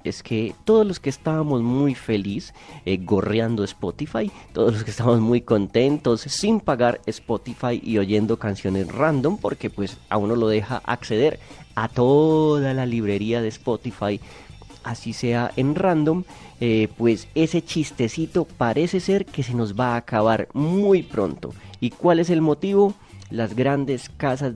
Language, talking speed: Spanish, 155 wpm